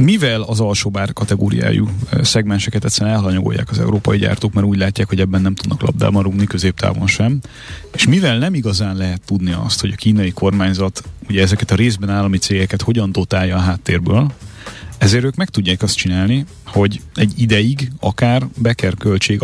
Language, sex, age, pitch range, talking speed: Hungarian, male, 30-49, 95-120 Hz, 165 wpm